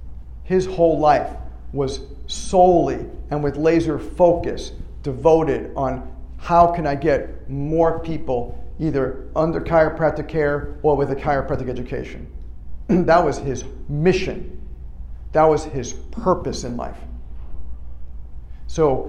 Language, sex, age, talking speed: English, male, 50-69, 115 wpm